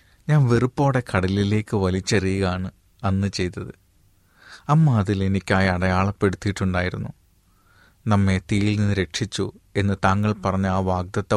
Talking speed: 100 wpm